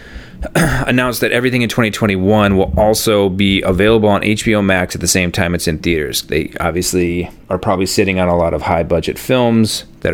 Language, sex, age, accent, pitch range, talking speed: English, male, 30-49, American, 85-105 Hz, 190 wpm